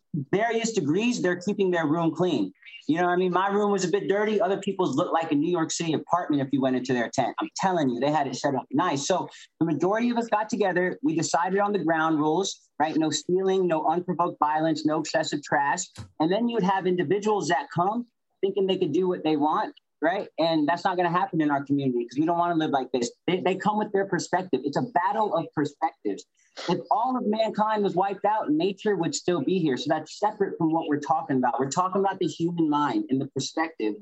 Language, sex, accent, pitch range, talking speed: English, male, American, 150-195 Hz, 240 wpm